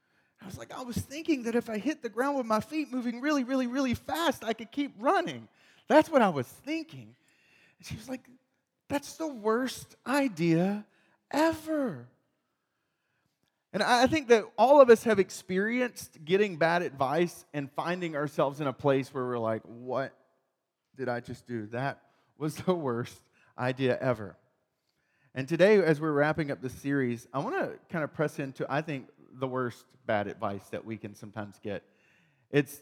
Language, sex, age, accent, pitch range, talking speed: English, male, 30-49, American, 120-175 Hz, 175 wpm